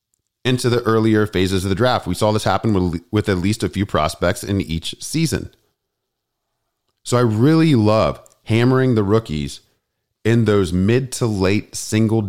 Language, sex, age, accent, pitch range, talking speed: English, male, 40-59, American, 80-110 Hz, 165 wpm